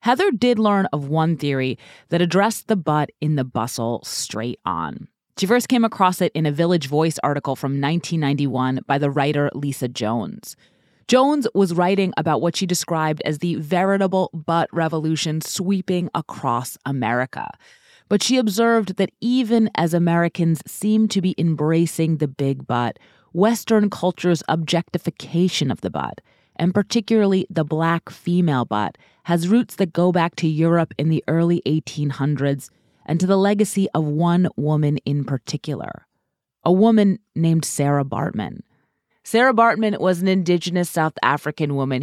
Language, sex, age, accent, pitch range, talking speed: English, female, 30-49, American, 145-195 Hz, 150 wpm